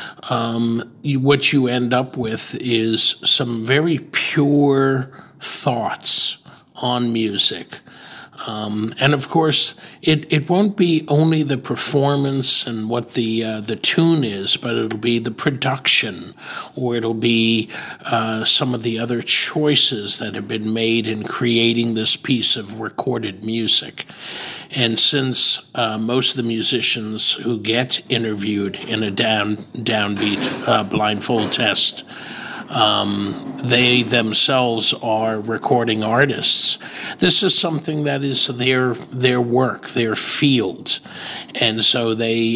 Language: Italian